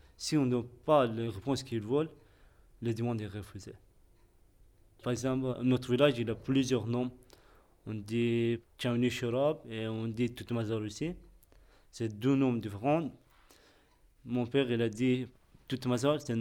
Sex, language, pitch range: male, French, 110-130 Hz